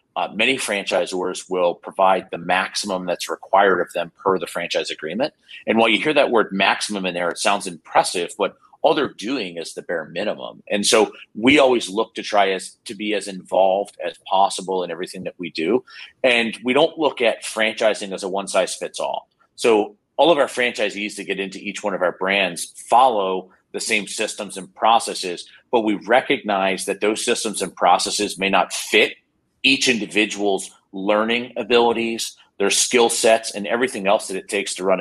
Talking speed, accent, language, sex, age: 190 wpm, American, English, male, 40-59